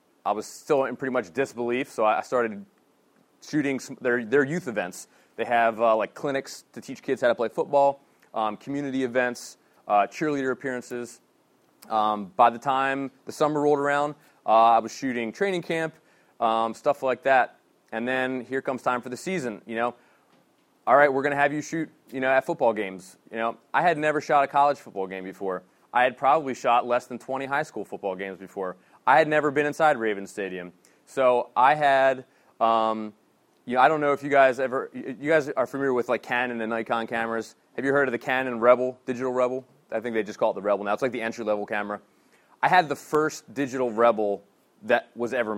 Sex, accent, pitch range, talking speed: male, American, 115-135 Hz, 210 wpm